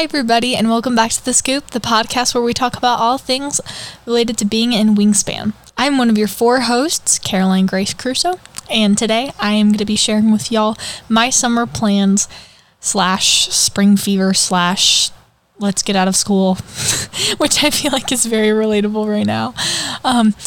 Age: 10-29